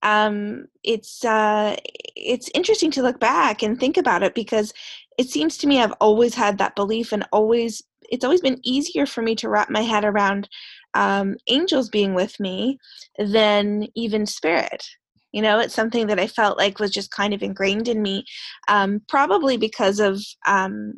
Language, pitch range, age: English, 205-250 Hz, 20-39